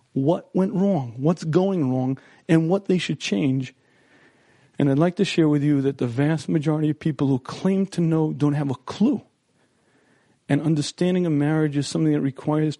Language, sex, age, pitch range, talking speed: English, male, 40-59, 140-175 Hz, 190 wpm